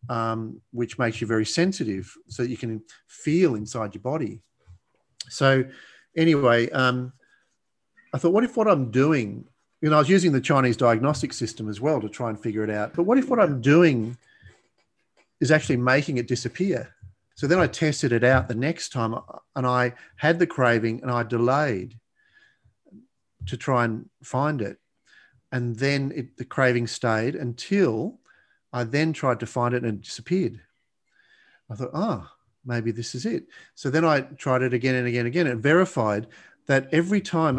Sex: male